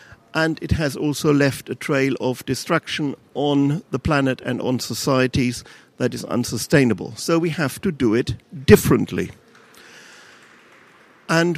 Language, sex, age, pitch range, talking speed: English, male, 50-69, 130-160 Hz, 135 wpm